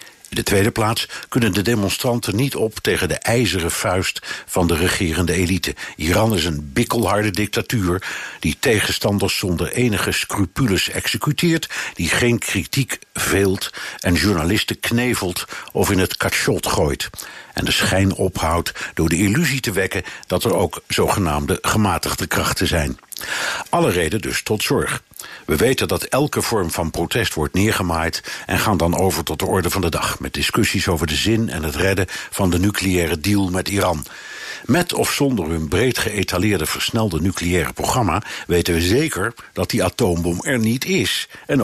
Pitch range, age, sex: 90-115 Hz, 60-79, male